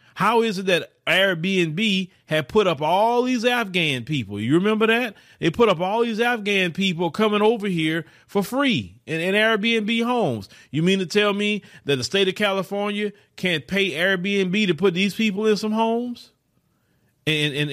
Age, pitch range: 30-49, 145-205 Hz